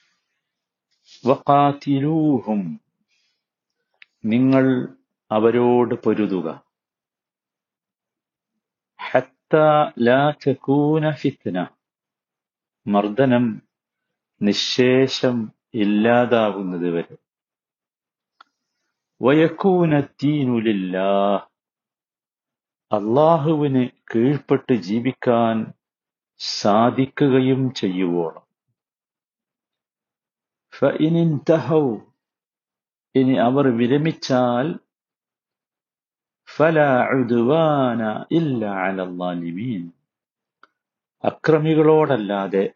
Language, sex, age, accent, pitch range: Malayalam, male, 50-69, native, 105-145 Hz